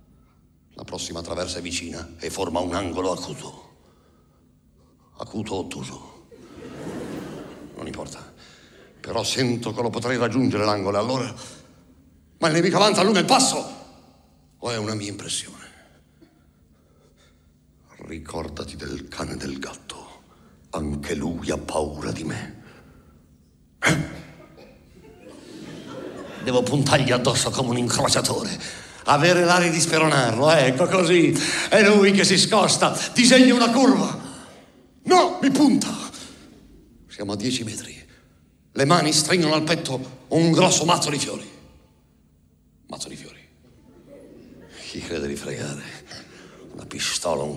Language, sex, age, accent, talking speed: Italian, male, 60-79, native, 120 wpm